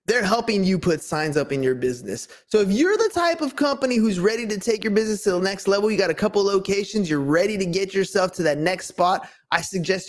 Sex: male